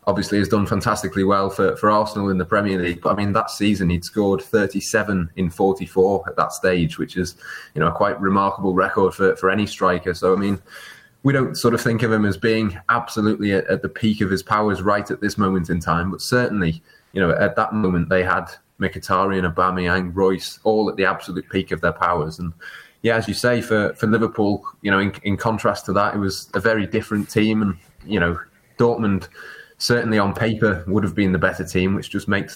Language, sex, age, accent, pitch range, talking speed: English, male, 20-39, British, 95-110 Hz, 220 wpm